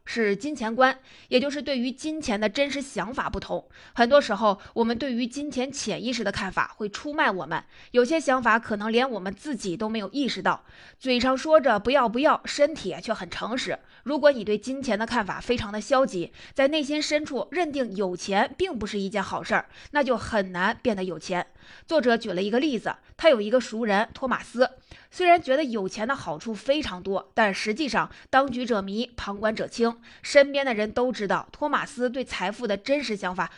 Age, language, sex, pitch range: 20-39, Chinese, female, 205-275 Hz